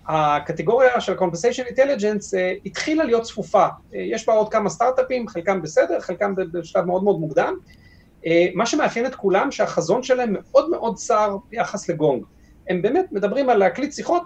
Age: 30-49